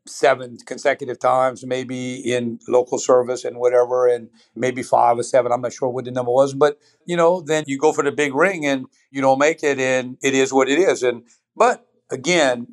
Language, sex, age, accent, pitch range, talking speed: English, male, 50-69, American, 125-145 Hz, 210 wpm